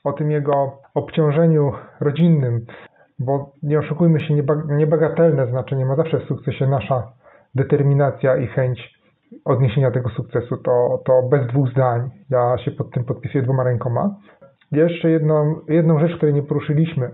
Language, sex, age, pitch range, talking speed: Polish, male, 30-49, 130-155 Hz, 145 wpm